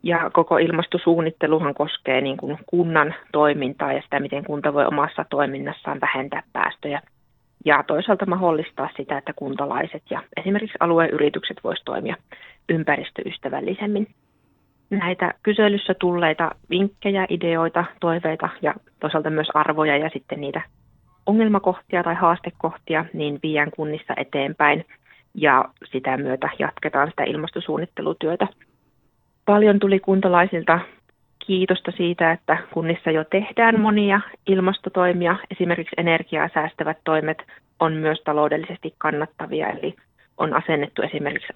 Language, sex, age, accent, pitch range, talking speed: Finnish, female, 30-49, native, 150-185 Hz, 110 wpm